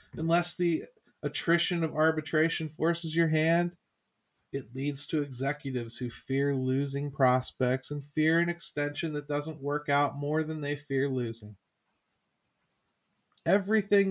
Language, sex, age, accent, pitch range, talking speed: English, male, 40-59, American, 130-170 Hz, 130 wpm